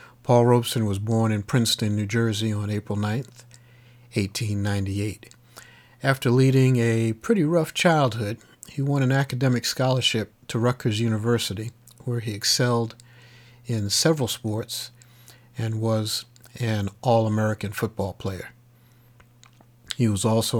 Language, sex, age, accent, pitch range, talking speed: English, male, 50-69, American, 110-125 Hz, 120 wpm